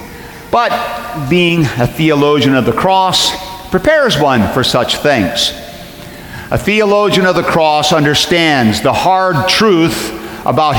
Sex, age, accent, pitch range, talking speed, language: male, 50-69, American, 130-170 Hz, 120 wpm, English